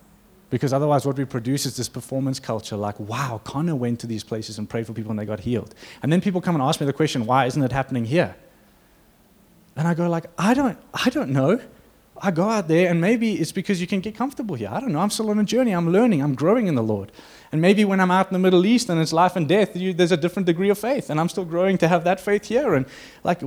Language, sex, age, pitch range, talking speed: English, male, 20-39, 125-175 Hz, 275 wpm